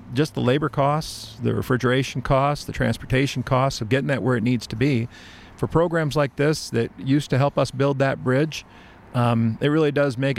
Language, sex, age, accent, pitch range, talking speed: English, male, 50-69, American, 115-135 Hz, 210 wpm